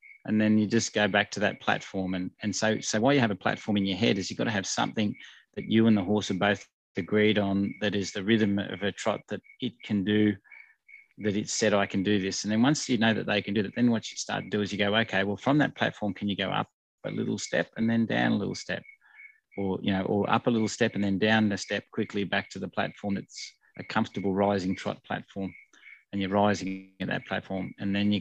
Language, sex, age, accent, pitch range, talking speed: English, male, 30-49, Australian, 100-115 Hz, 265 wpm